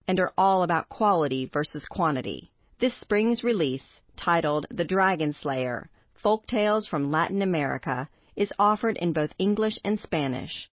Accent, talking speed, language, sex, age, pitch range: American, 145 wpm, English, female, 40-59, 150-200 Hz